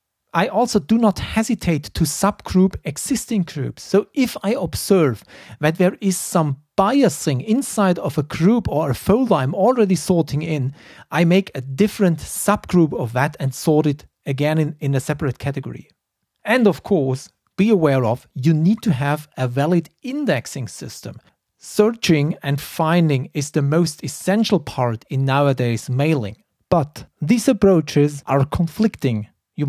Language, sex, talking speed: English, male, 155 wpm